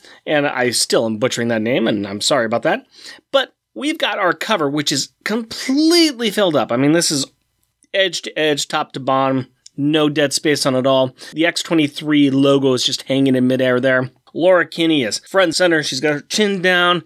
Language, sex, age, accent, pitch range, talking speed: English, male, 30-49, American, 135-185 Hz, 205 wpm